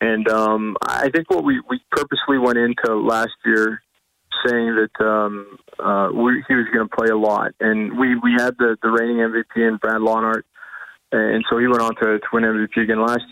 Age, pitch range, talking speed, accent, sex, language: 20-39, 110-115 Hz, 200 wpm, American, male, English